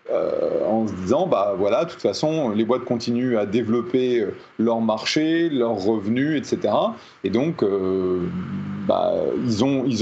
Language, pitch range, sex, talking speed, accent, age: French, 110-150 Hz, male, 155 wpm, French, 30-49